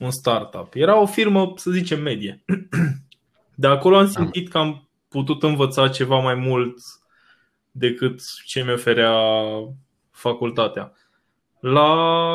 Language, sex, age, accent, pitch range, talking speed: Romanian, male, 20-39, native, 125-170 Hz, 115 wpm